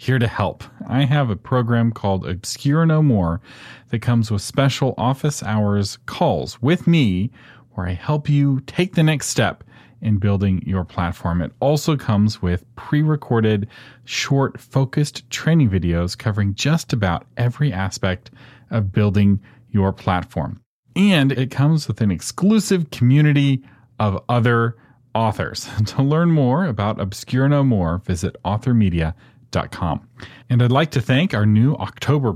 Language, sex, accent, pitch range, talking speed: English, male, American, 105-140 Hz, 145 wpm